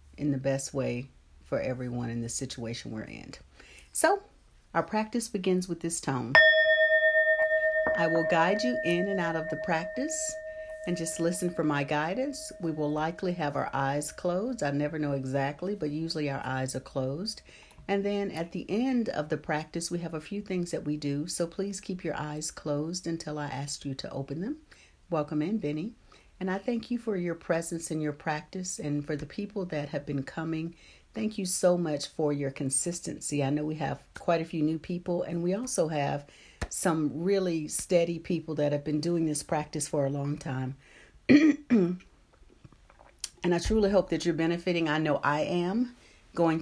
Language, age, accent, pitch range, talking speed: English, 50-69, American, 150-205 Hz, 190 wpm